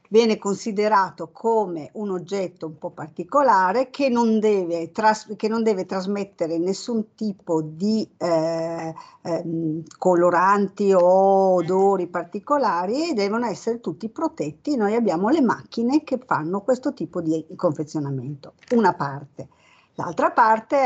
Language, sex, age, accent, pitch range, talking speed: Italian, female, 50-69, native, 185-230 Hz, 120 wpm